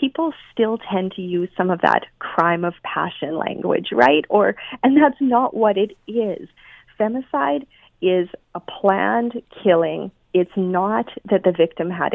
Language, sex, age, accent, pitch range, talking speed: English, female, 30-49, American, 170-225 Hz, 155 wpm